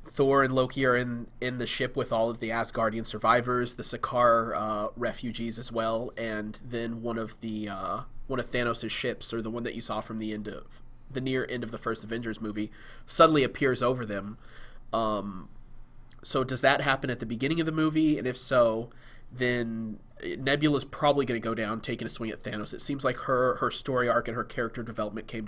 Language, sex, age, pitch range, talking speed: English, male, 20-39, 110-130 Hz, 210 wpm